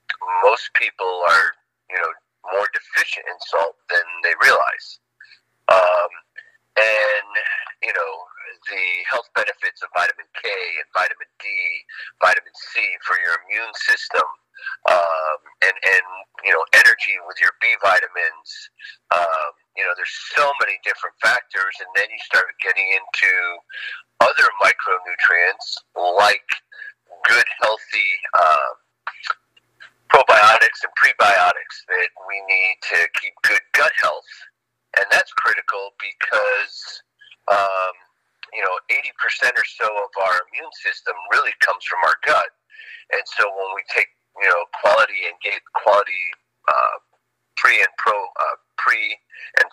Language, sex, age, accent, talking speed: English, male, 50-69, American, 130 wpm